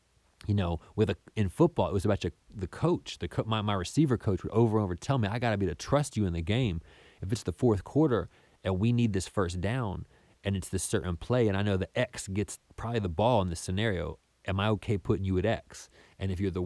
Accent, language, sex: American, English, male